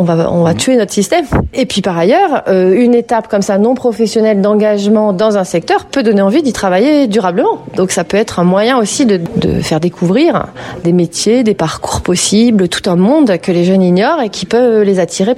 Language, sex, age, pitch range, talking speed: French, female, 30-49, 180-225 Hz, 220 wpm